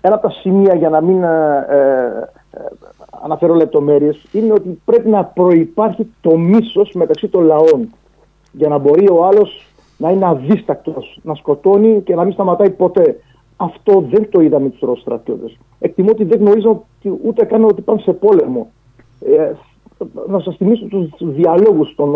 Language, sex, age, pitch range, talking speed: Greek, male, 50-69, 150-205 Hz, 160 wpm